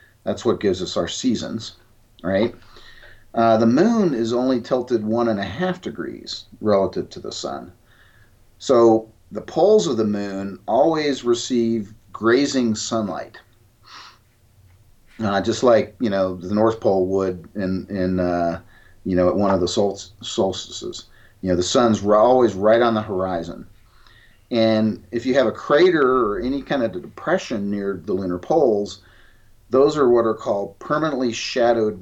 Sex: male